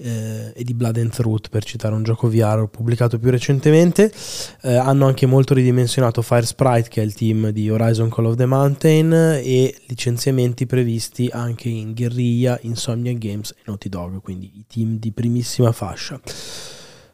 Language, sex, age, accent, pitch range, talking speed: Italian, male, 20-39, native, 110-130 Hz, 165 wpm